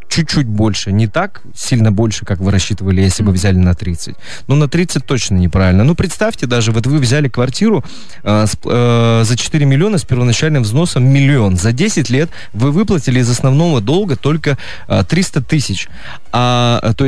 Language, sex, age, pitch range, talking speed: Russian, male, 20-39, 105-140 Hz, 170 wpm